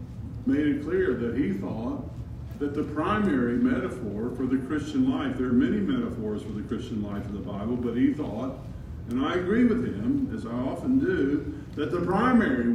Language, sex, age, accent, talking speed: English, male, 50-69, American, 190 wpm